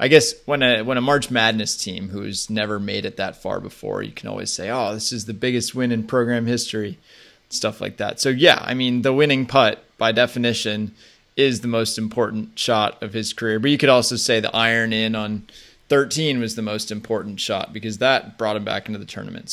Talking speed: 220 wpm